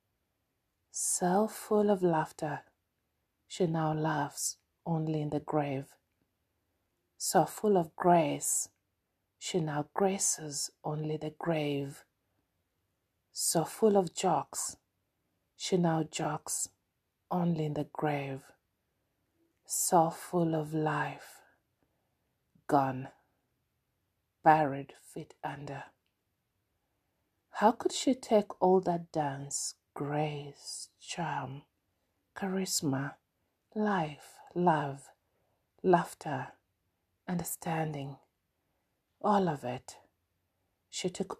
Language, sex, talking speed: English, female, 85 wpm